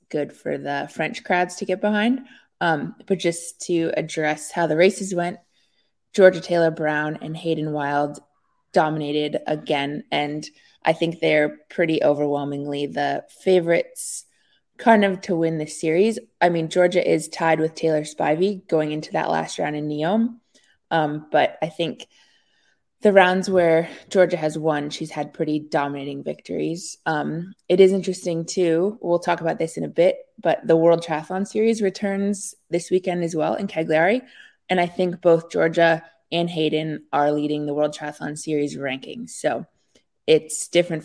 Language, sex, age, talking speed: English, female, 20-39, 160 wpm